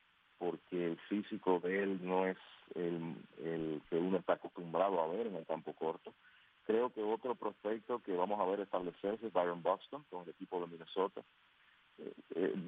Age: 40-59